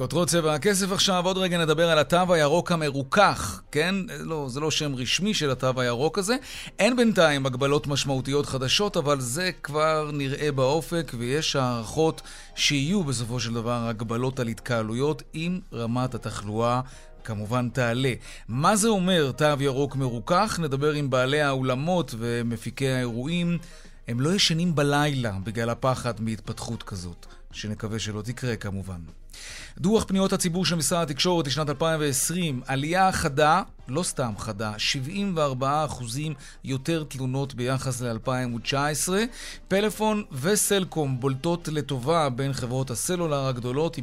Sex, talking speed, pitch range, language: male, 130 wpm, 125-165 Hz, Hebrew